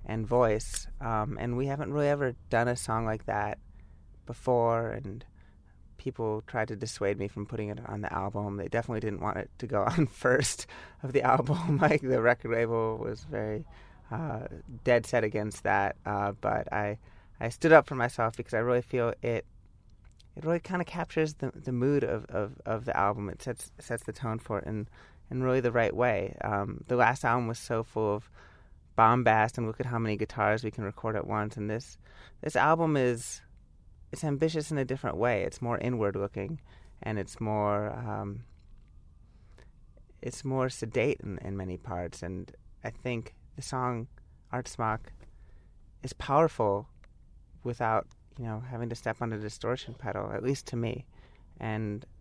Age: 30-49